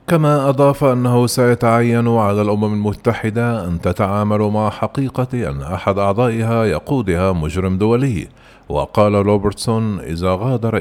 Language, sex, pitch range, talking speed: Arabic, male, 90-115 Hz, 115 wpm